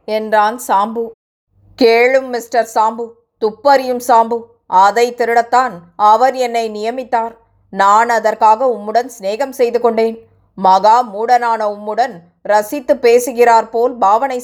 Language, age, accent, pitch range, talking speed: Tamil, 20-39, native, 215-245 Hz, 105 wpm